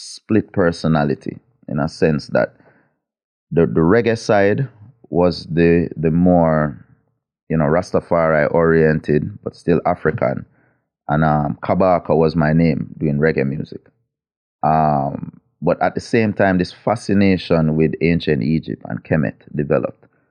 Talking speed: 130 wpm